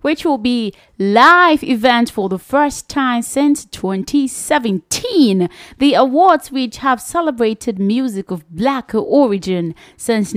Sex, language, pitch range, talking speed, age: female, English, 185-255 Hz, 120 wpm, 20-39